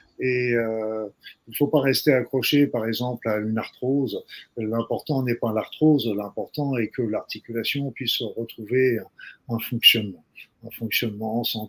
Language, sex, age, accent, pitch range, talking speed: French, male, 50-69, French, 115-140 Hz, 150 wpm